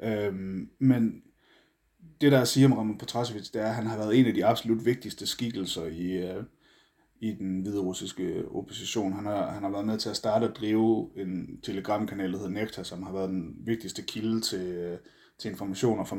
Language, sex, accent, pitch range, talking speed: Danish, male, native, 100-115 Hz, 195 wpm